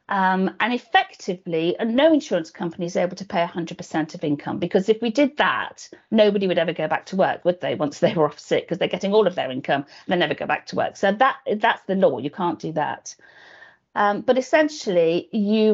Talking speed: 225 wpm